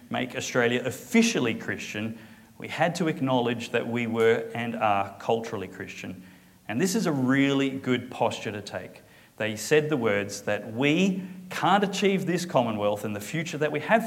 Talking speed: 170 wpm